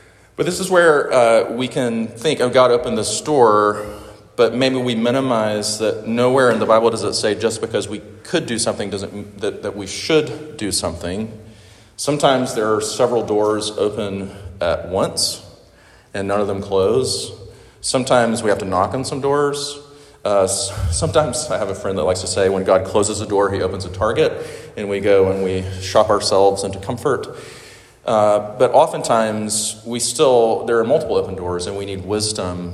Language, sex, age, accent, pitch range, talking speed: English, male, 30-49, American, 95-115 Hz, 185 wpm